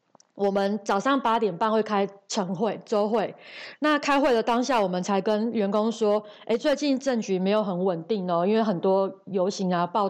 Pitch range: 195-240 Hz